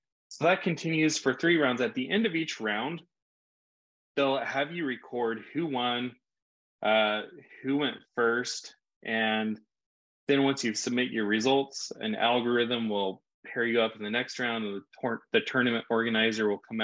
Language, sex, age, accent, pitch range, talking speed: English, male, 20-39, American, 105-135 Hz, 165 wpm